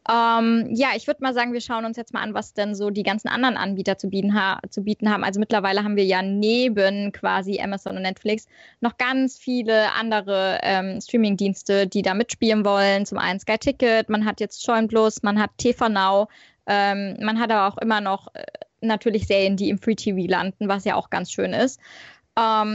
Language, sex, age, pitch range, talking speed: German, female, 20-39, 200-235 Hz, 205 wpm